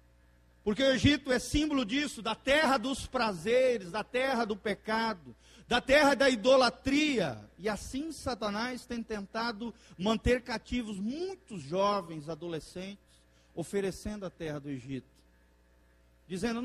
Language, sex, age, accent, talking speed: Portuguese, male, 40-59, Brazilian, 125 wpm